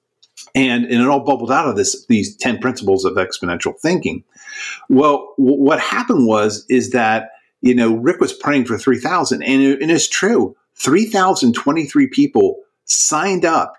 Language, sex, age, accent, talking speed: English, male, 50-69, American, 175 wpm